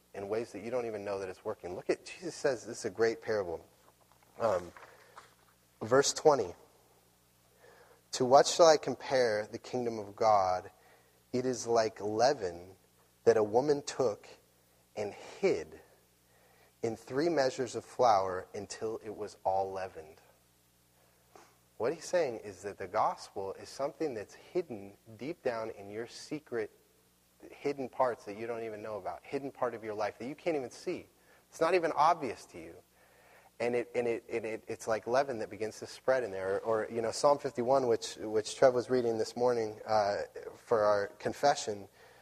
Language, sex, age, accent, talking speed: English, male, 30-49, American, 180 wpm